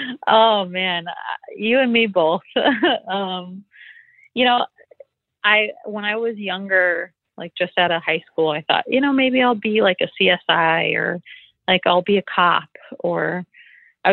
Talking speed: 160 wpm